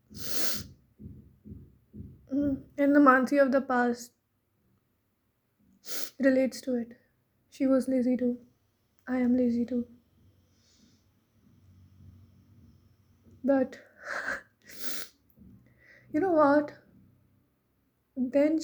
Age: 20-39